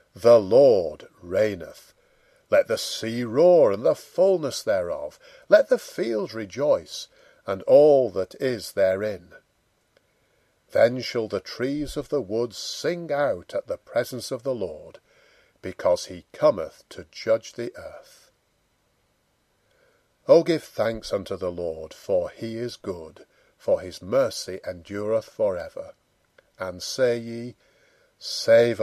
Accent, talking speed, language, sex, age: British, 130 wpm, English, male, 50-69